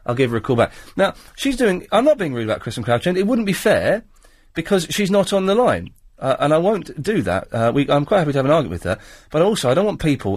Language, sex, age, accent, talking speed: English, male, 40-59, British, 285 wpm